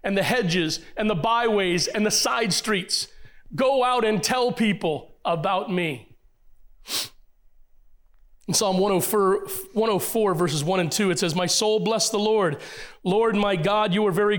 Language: English